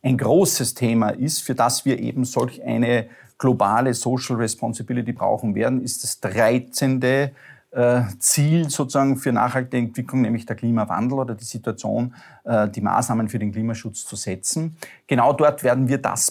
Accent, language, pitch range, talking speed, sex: Austrian, German, 115-135 Hz, 150 wpm, male